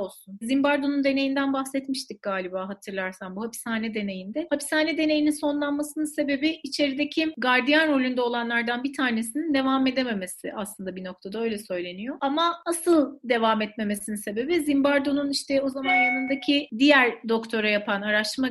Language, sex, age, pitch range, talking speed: Turkish, female, 30-49, 220-285 Hz, 130 wpm